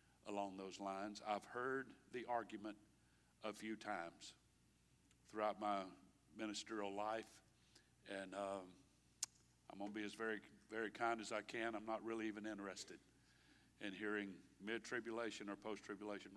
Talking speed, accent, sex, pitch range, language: 135 wpm, American, male, 100-125 Hz, English